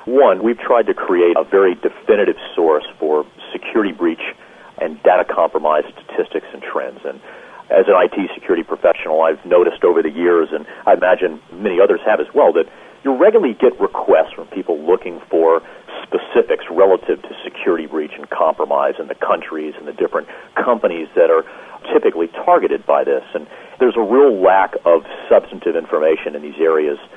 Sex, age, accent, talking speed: male, 40-59, American, 170 wpm